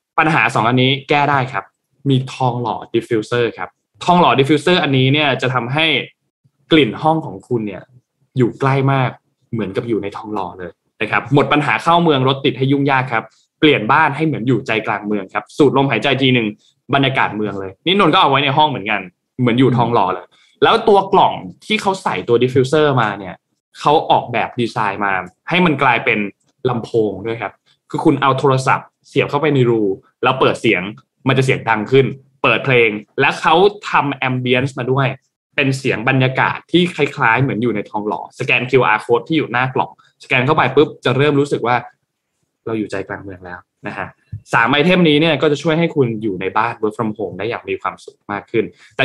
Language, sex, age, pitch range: Thai, male, 20-39, 115-150 Hz